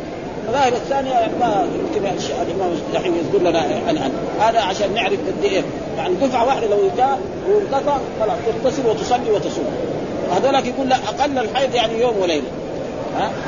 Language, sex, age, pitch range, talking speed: Arabic, male, 40-59, 225-270 Hz, 150 wpm